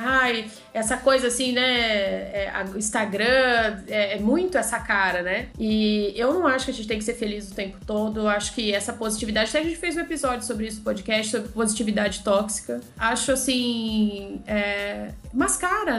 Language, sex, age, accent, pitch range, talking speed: Portuguese, female, 20-39, Brazilian, 215-285 Hz, 175 wpm